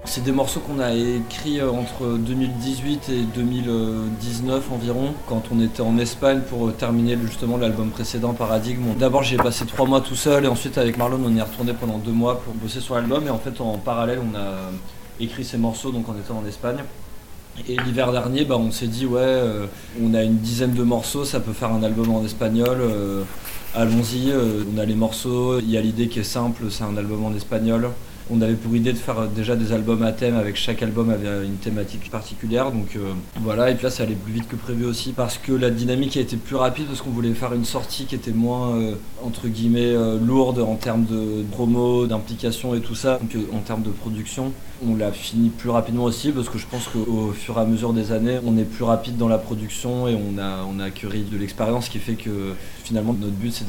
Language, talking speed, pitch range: French, 225 wpm, 110-120 Hz